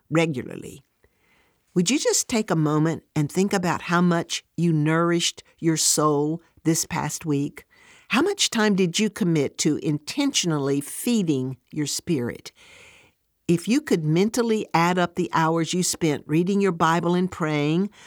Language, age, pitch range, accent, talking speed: English, 60-79, 160-205 Hz, American, 150 wpm